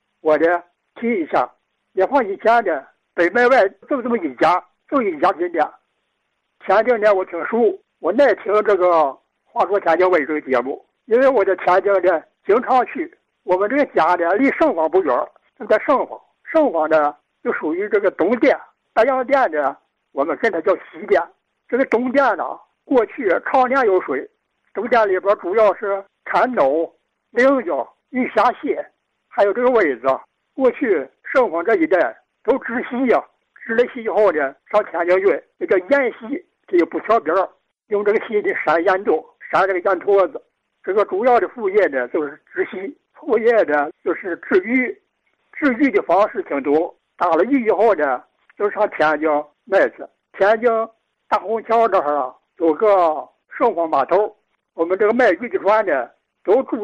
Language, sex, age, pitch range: Chinese, male, 60-79, 185-285 Hz